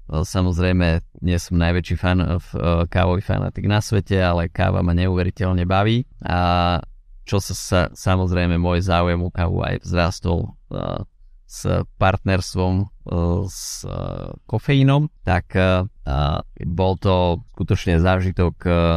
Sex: male